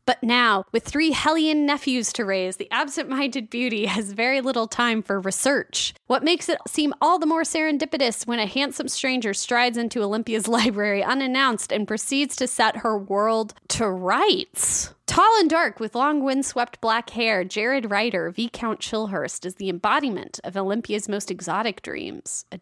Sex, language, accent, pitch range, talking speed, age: female, English, American, 210-275 Hz, 170 wpm, 20-39